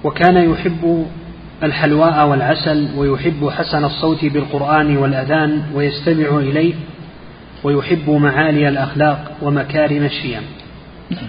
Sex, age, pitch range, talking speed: male, 30-49, 145-160 Hz, 85 wpm